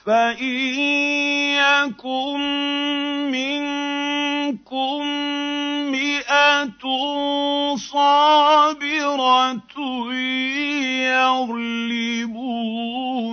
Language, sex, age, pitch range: Arabic, male, 50-69, 195-255 Hz